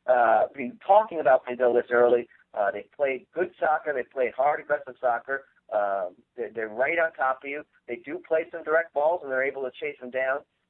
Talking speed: 215 wpm